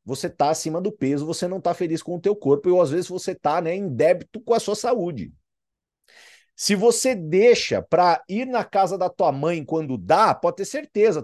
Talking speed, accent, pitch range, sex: 215 wpm, Brazilian, 180-235 Hz, male